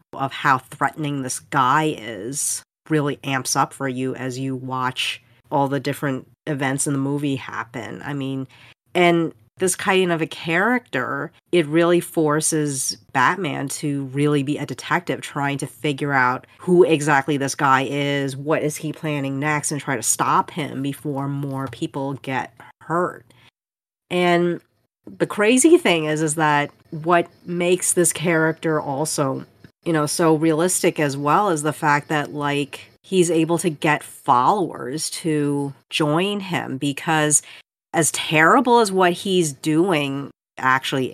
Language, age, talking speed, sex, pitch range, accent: English, 40-59, 150 wpm, female, 135-165 Hz, American